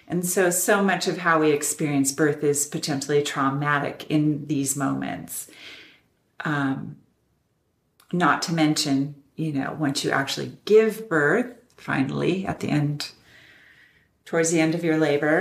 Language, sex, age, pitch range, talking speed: English, female, 40-59, 140-165 Hz, 140 wpm